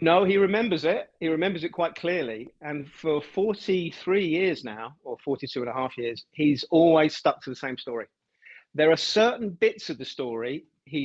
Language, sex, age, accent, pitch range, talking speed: English, male, 40-59, British, 140-180 Hz, 190 wpm